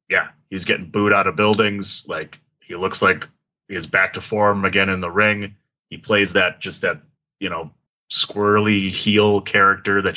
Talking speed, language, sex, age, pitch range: 185 wpm, English, male, 30-49, 100-110 Hz